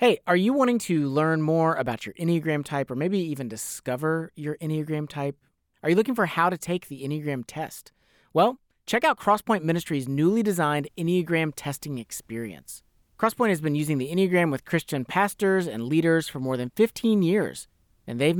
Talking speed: 185 wpm